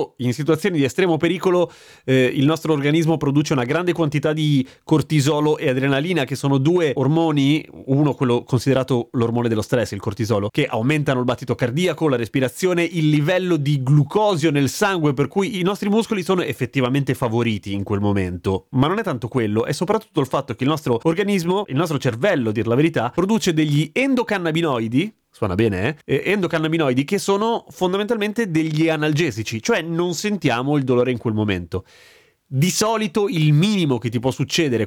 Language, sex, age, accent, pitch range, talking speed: Italian, male, 30-49, native, 125-170 Hz, 175 wpm